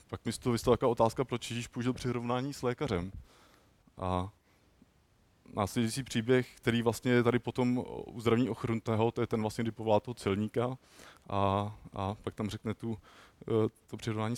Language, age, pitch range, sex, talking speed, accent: Czech, 20-39, 105-120 Hz, male, 155 wpm, native